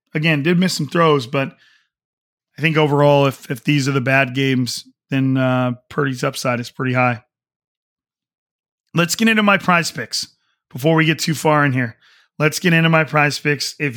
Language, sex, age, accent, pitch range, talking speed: English, male, 40-59, American, 135-165 Hz, 185 wpm